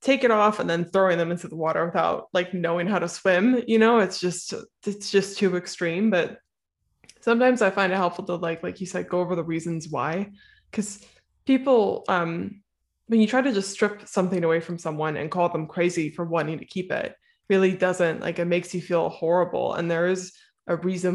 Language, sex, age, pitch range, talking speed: English, female, 20-39, 165-200 Hz, 210 wpm